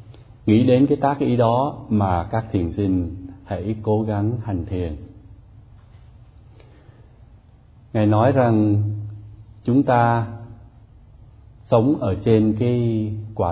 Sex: male